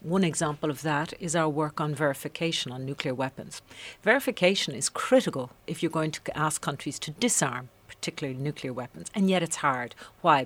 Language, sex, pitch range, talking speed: English, female, 140-170 Hz, 180 wpm